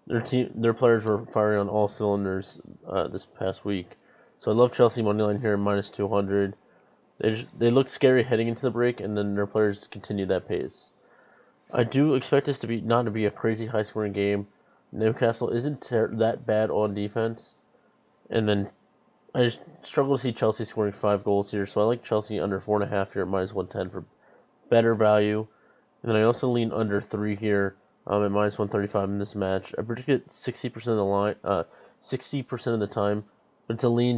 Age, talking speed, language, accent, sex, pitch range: 20-39, 200 wpm, English, American, male, 100-115 Hz